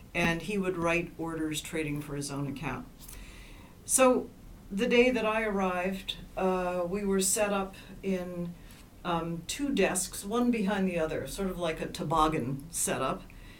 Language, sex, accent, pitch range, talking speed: English, female, American, 155-190 Hz, 155 wpm